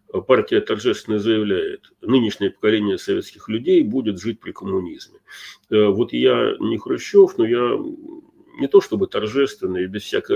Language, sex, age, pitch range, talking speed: Russian, male, 40-59, 315-390 Hz, 140 wpm